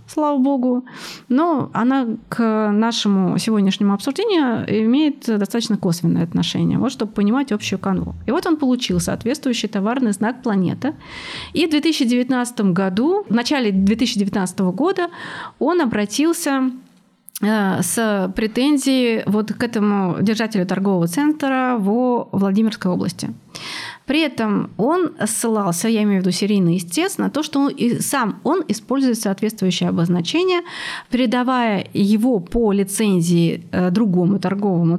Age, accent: 30-49, native